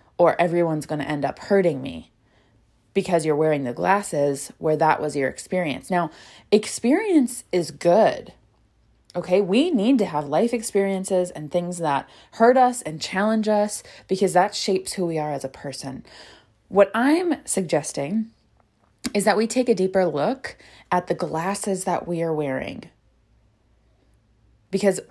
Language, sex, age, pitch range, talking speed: English, female, 20-39, 150-200 Hz, 155 wpm